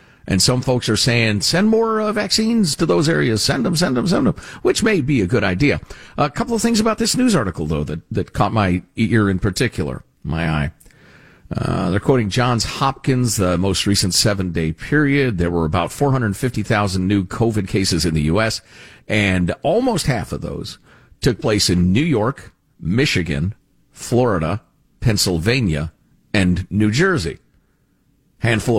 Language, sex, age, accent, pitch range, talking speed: English, male, 50-69, American, 90-140 Hz, 165 wpm